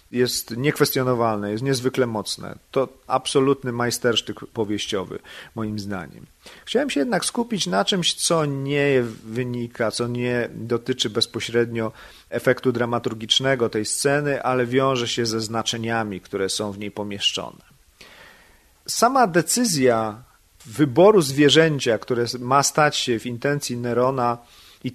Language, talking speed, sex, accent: Polish, 120 wpm, male, native